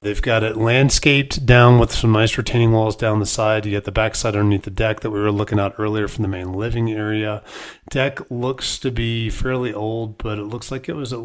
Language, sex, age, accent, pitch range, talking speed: English, male, 40-59, American, 100-120 Hz, 235 wpm